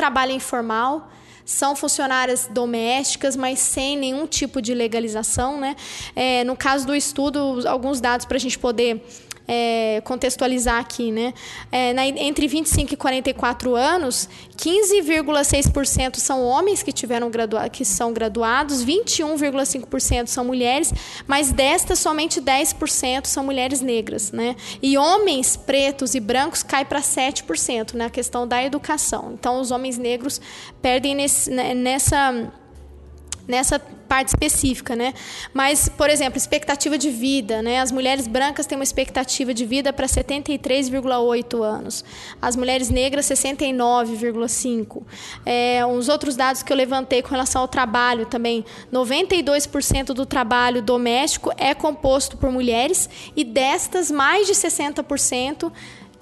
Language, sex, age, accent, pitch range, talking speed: Portuguese, female, 10-29, Brazilian, 245-285 Hz, 130 wpm